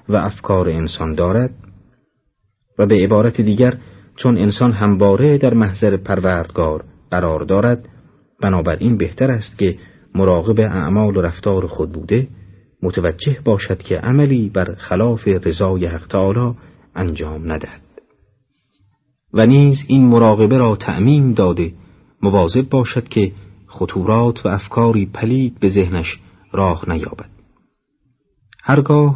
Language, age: Persian, 40-59